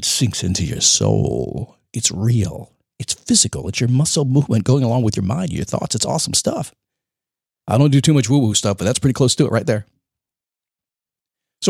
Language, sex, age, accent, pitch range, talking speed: English, male, 50-69, American, 105-165 Hz, 200 wpm